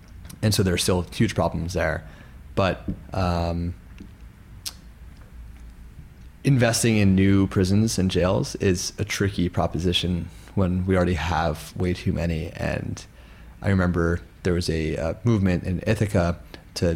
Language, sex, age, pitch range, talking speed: English, male, 30-49, 85-100 Hz, 135 wpm